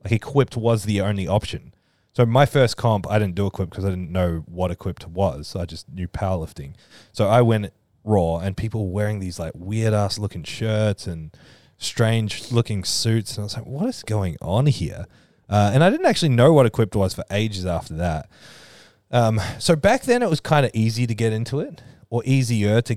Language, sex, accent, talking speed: English, male, Australian, 210 wpm